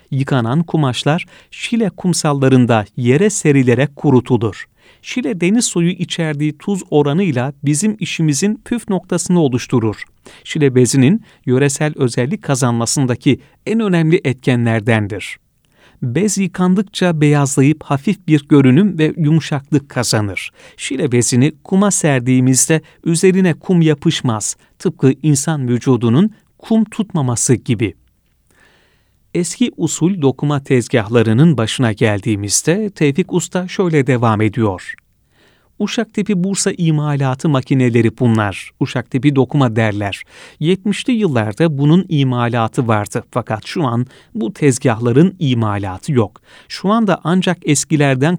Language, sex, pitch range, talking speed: Turkish, male, 125-170 Hz, 105 wpm